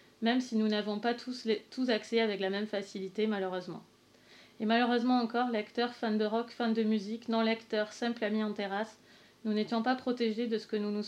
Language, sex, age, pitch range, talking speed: French, female, 30-49, 215-240 Hz, 205 wpm